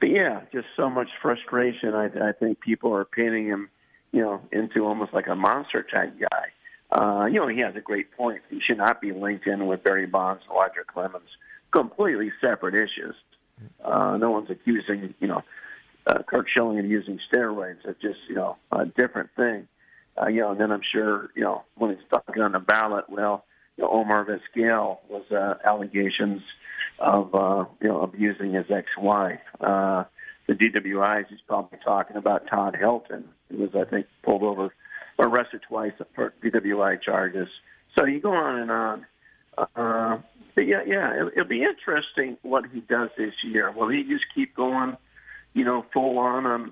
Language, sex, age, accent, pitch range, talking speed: English, male, 50-69, American, 100-125 Hz, 185 wpm